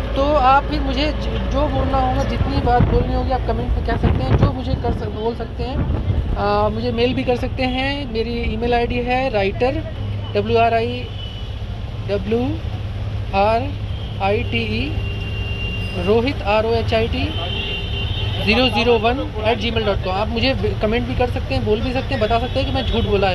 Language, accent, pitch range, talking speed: Hindi, native, 95-115 Hz, 190 wpm